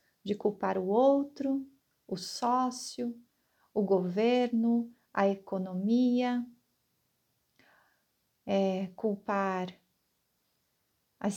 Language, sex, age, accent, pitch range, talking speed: Portuguese, female, 40-59, Brazilian, 195-255 Hz, 65 wpm